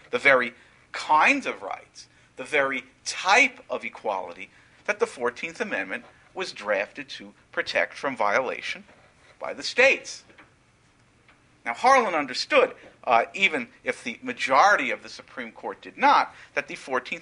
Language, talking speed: English, 135 wpm